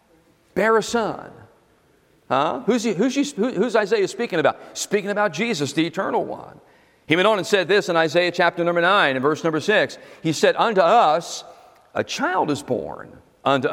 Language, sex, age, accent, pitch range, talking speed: English, male, 50-69, American, 135-190 Hz, 170 wpm